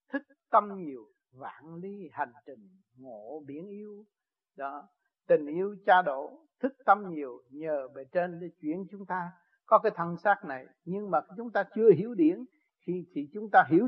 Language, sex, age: Vietnamese, male, 60-79